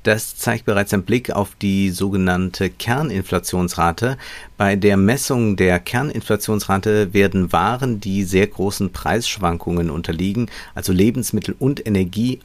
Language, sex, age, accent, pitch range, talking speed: German, male, 50-69, German, 90-110 Hz, 120 wpm